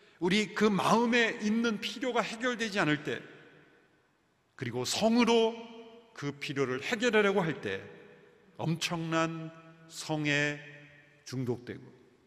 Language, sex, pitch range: Korean, male, 165-230 Hz